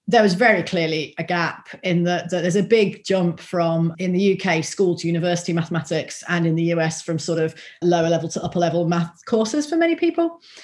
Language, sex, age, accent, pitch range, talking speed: English, female, 30-49, British, 170-210 Hz, 215 wpm